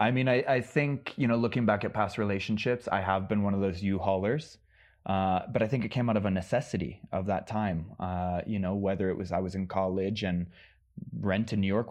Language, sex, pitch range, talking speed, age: English, male, 95-110 Hz, 230 wpm, 20-39